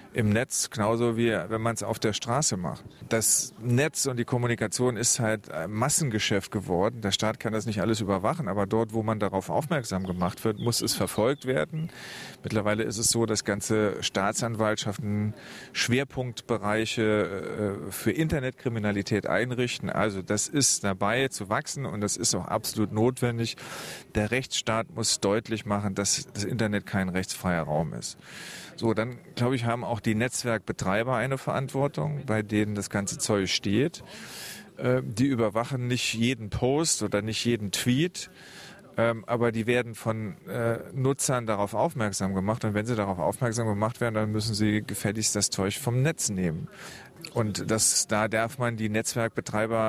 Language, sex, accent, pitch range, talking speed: German, male, German, 105-125 Hz, 160 wpm